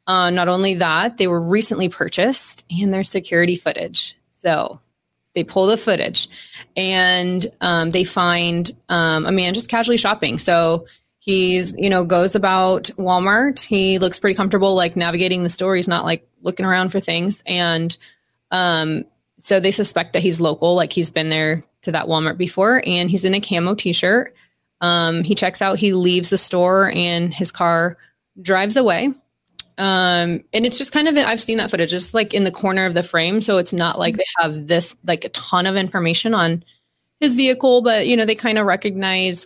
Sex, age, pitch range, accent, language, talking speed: female, 20-39, 175-200 Hz, American, English, 185 wpm